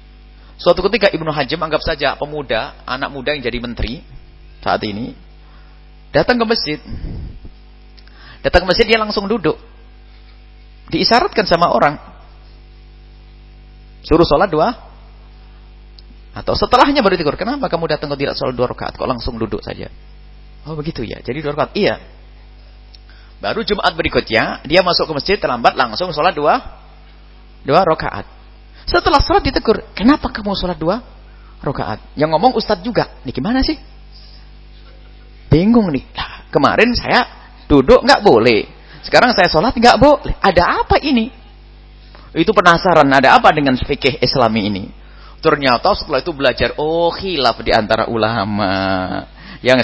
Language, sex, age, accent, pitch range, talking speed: English, male, 30-49, Indonesian, 125-195 Hz, 135 wpm